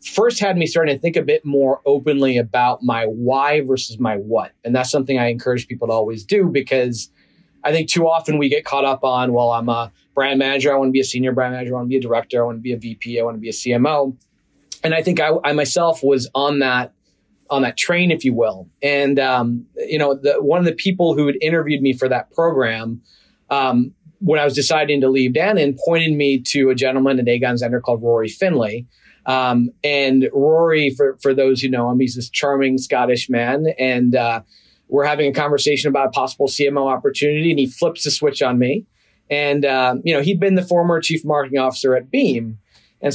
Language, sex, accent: English, male, American